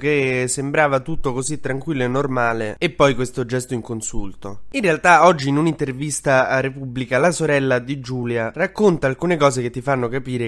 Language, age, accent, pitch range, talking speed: Italian, 20-39, native, 115-145 Hz, 180 wpm